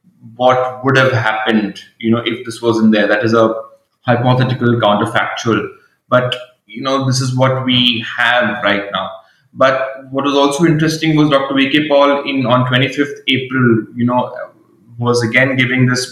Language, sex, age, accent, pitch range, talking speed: English, male, 20-39, Indian, 115-130 Hz, 165 wpm